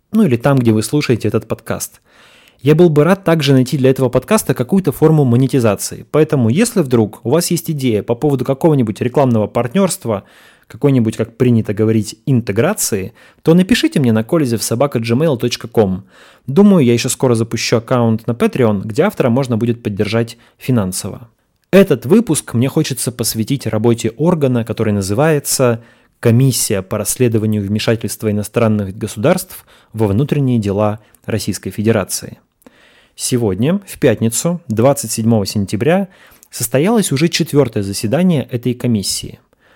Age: 20-39